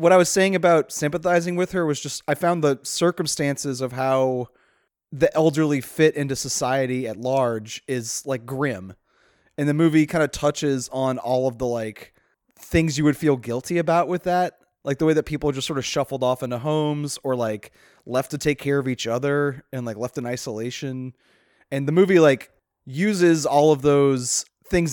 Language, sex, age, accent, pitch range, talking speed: English, male, 20-39, American, 130-160 Hz, 195 wpm